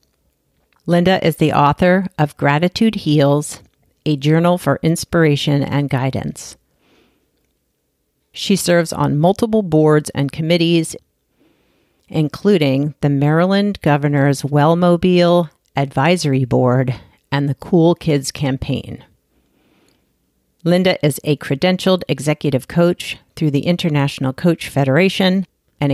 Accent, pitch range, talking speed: American, 140-175 Hz, 100 wpm